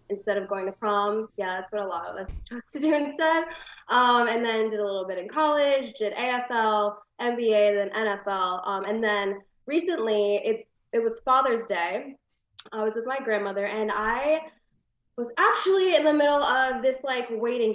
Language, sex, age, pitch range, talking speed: English, female, 10-29, 200-260 Hz, 185 wpm